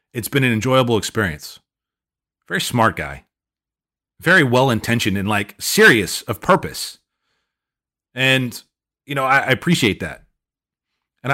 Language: English